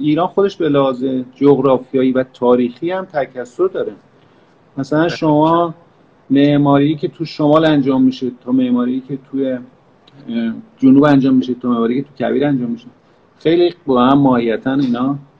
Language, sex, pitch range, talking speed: Persian, male, 130-165 Hz, 140 wpm